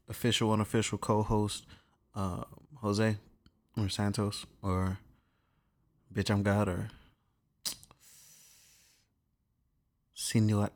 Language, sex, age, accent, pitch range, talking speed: English, male, 20-39, American, 100-115 Hz, 65 wpm